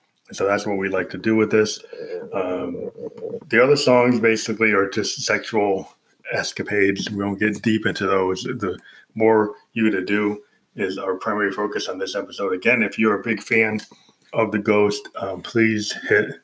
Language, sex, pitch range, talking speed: English, male, 100-110 Hz, 175 wpm